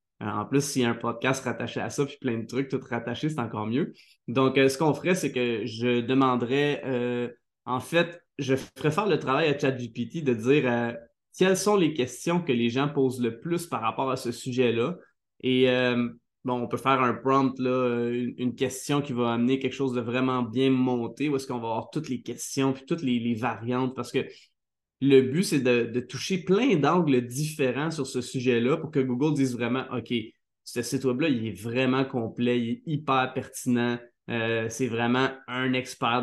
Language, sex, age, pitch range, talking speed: French, male, 20-39, 120-135 Hz, 205 wpm